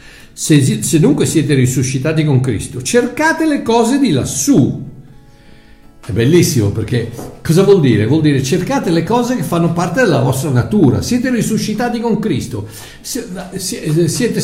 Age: 50-69